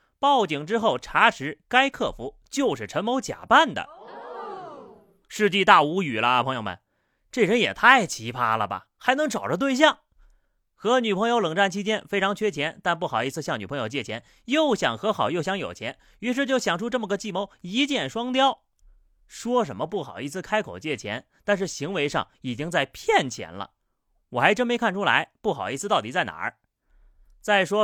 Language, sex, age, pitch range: Chinese, male, 30-49, 145-230 Hz